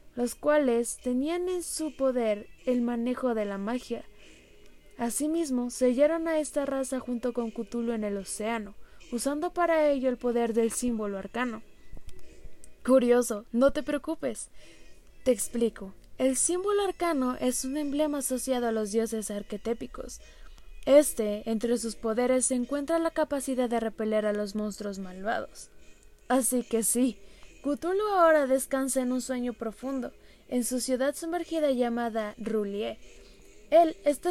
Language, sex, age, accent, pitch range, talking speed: Spanish, female, 20-39, Mexican, 225-290 Hz, 140 wpm